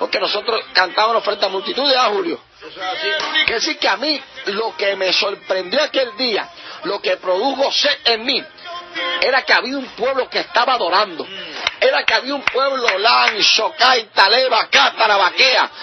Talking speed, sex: 160 wpm, male